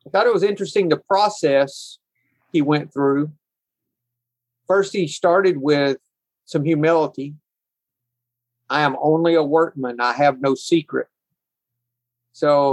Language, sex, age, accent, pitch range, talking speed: English, male, 50-69, American, 130-165 Hz, 125 wpm